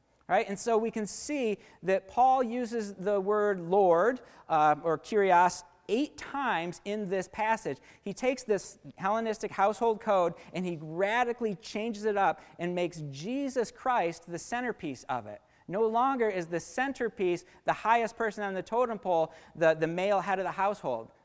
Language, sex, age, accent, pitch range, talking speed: English, male, 40-59, American, 170-220 Hz, 165 wpm